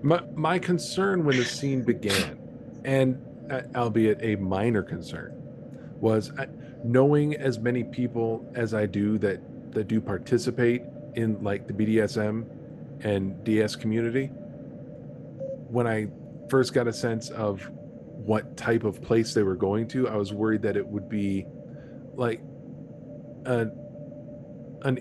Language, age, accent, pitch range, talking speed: English, 40-59, American, 105-130 Hz, 140 wpm